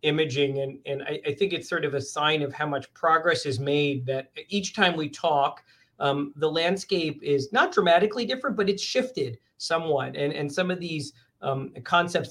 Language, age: English, 40-59